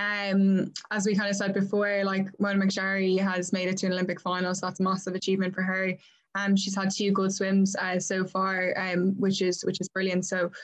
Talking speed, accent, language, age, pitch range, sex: 225 wpm, Irish, English, 10-29, 185-195 Hz, female